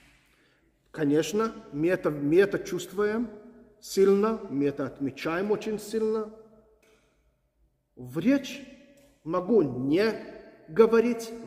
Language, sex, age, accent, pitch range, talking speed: Russian, male, 40-59, native, 160-250 Hz, 85 wpm